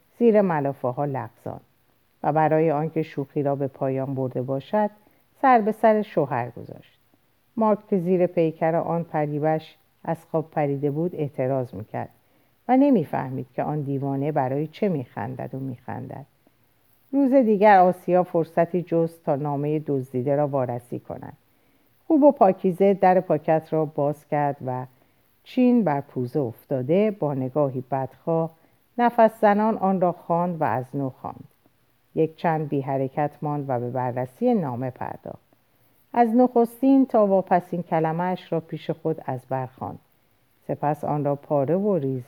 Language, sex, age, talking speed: Persian, female, 50-69, 140 wpm